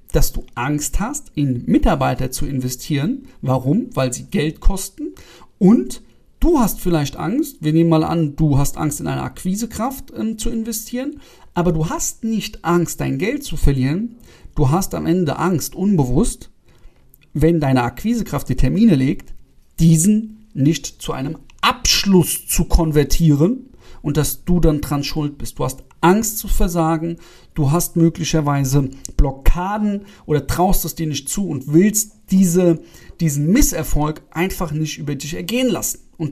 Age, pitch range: 40-59, 150-195 Hz